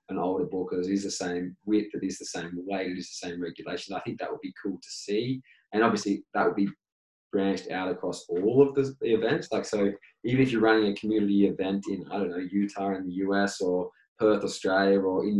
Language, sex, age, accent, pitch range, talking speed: English, male, 20-39, Australian, 95-110 Hz, 240 wpm